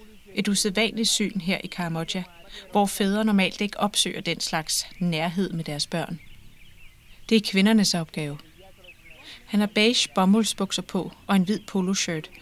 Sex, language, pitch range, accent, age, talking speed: female, Danish, 175-210 Hz, native, 30-49, 145 wpm